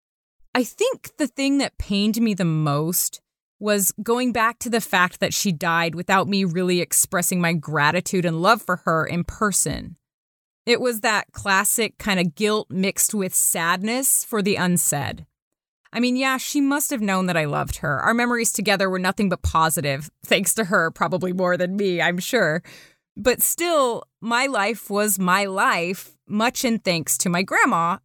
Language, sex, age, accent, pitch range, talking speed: English, female, 20-39, American, 175-225 Hz, 180 wpm